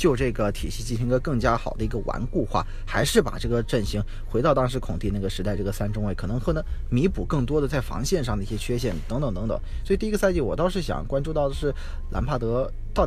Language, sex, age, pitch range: Chinese, male, 20-39, 90-130 Hz